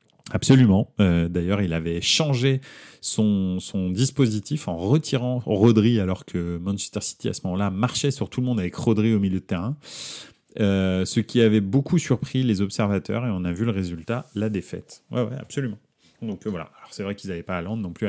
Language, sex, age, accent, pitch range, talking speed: French, male, 30-49, French, 95-120 Hz, 200 wpm